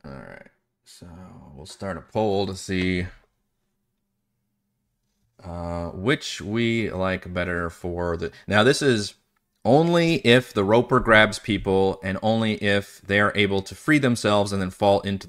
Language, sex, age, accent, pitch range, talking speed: English, male, 30-49, American, 90-110 Hz, 150 wpm